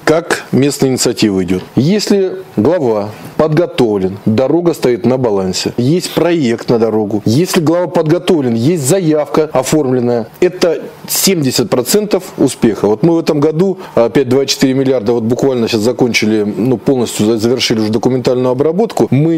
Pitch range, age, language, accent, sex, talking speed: 115-155 Hz, 20-39, Russian, native, male, 135 wpm